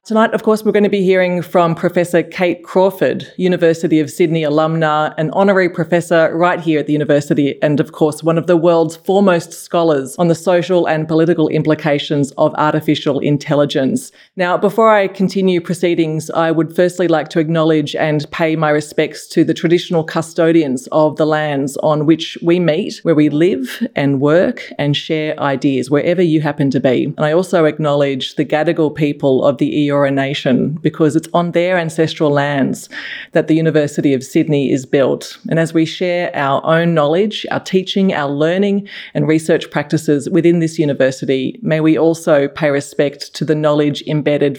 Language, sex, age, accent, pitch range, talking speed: English, female, 30-49, Australian, 150-175 Hz, 180 wpm